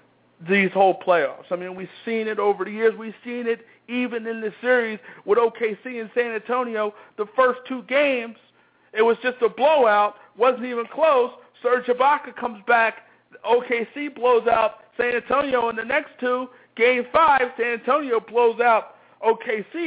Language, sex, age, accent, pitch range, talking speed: English, male, 50-69, American, 225-275 Hz, 165 wpm